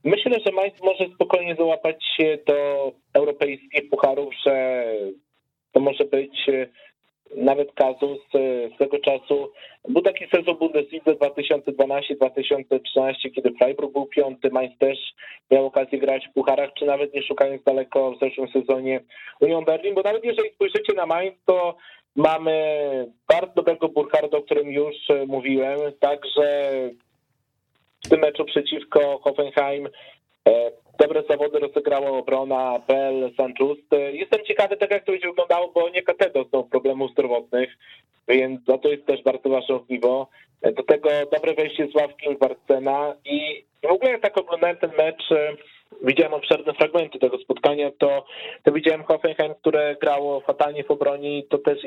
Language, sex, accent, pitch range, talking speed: Polish, male, native, 135-165 Hz, 140 wpm